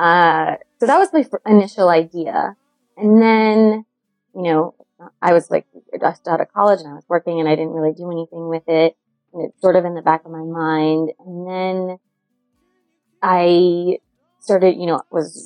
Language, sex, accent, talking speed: English, female, American, 185 wpm